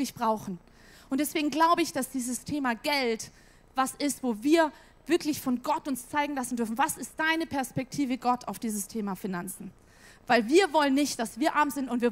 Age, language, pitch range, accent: 30-49, German, 245-330 Hz, German